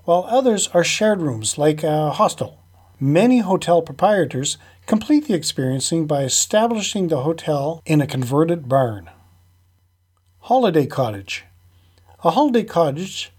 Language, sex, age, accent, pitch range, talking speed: English, male, 40-59, American, 115-185 Hz, 120 wpm